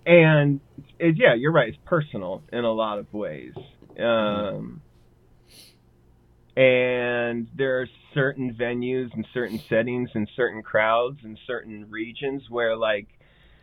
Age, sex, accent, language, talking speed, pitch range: 30-49, male, American, English, 125 wpm, 110-145 Hz